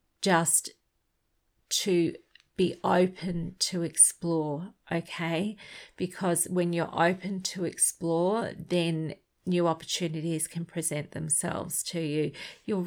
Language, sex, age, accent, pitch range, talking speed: English, female, 40-59, Australian, 160-185 Hz, 105 wpm